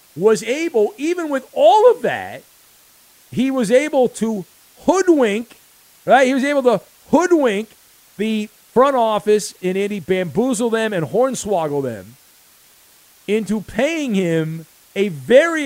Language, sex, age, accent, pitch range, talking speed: English, male, 50-69, American, 175-245 Hz, 125 wpm